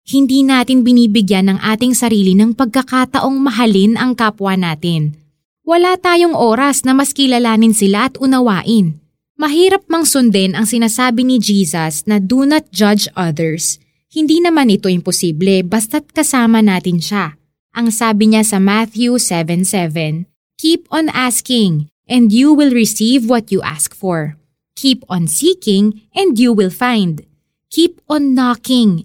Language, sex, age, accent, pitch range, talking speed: Filipino, female, 20-39, native, 190-270 Hz, 140 wpm